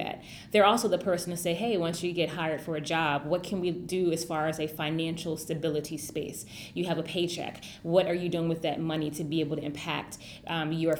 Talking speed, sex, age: 235 wpm, female, 20-39